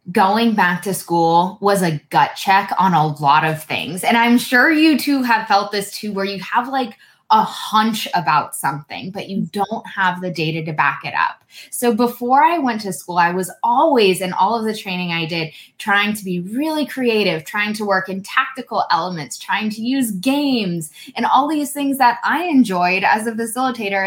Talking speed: 200 wpm